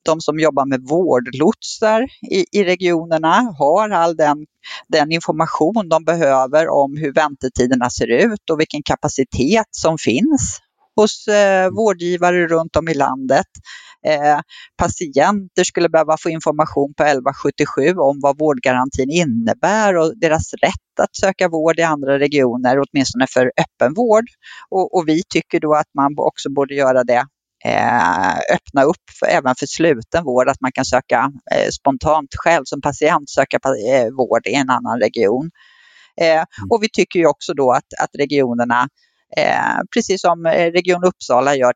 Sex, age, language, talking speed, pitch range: female, 30-49, Swedish, 150 wpm, 140-185 Hz